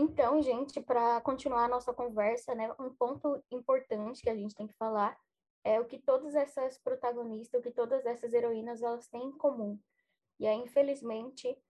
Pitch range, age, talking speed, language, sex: 220-255 Hz, 10-29, 180 wpm, Portuguese, female